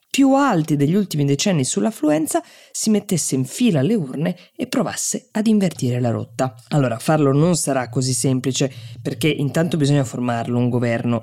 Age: 20-39